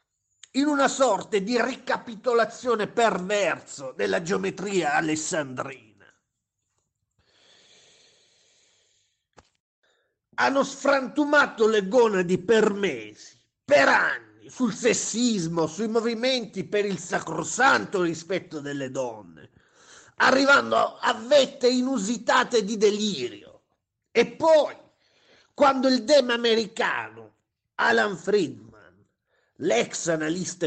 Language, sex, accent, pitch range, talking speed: Italian, male, native, 200-265 Hz, 85 wpm